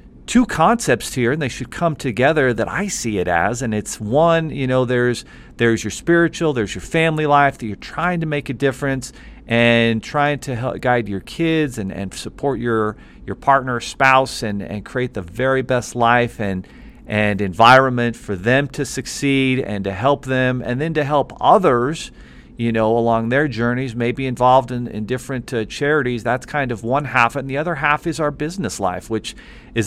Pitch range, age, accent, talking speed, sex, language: 115-140 Hz, 40-59, American, 195 wpm, male, English